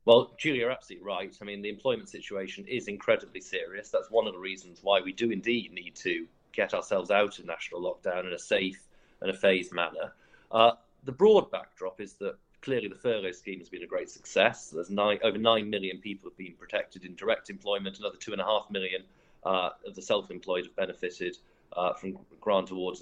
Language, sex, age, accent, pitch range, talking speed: English, male, 30-49, British, 100-140 Hz, 200 wpm